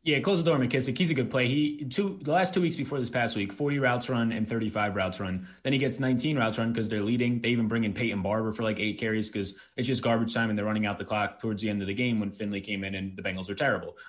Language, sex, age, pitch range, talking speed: English, male, 20-39, 105-130 Hz, 305 wpm